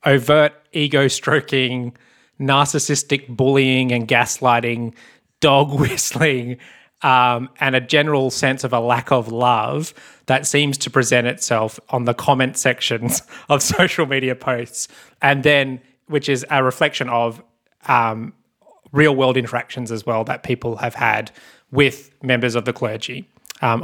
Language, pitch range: English, 120-150 Hz